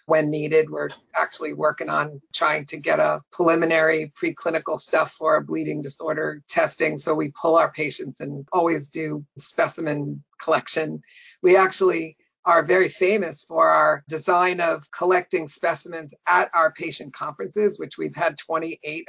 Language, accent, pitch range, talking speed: English, American, 160-185 Hz, 150 wpm